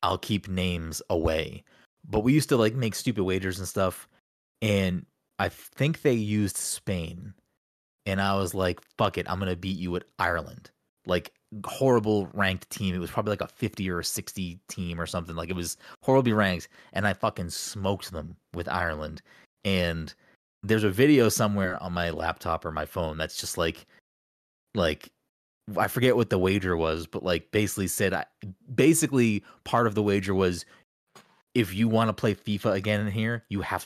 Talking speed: 185 wpm